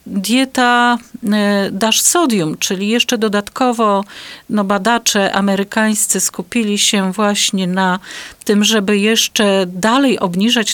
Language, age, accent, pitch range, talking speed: Polish, 40-59, native, 190-230 Hz, 100 wpm